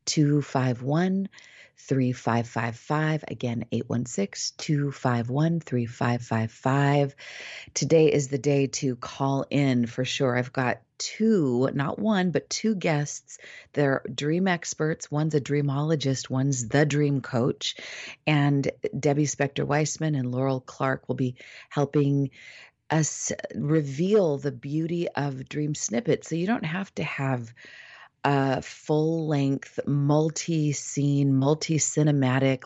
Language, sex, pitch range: English, female, 130-155 Hz